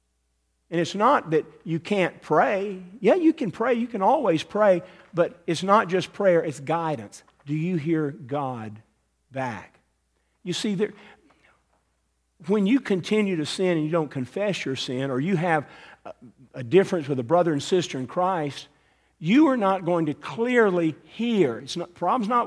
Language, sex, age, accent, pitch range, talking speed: English, male, 50-69, American, 125-185 Hz, 170 wpm